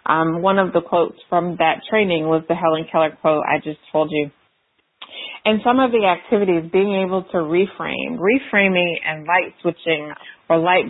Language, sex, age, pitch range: English, female, 30-49, 155-180 Hz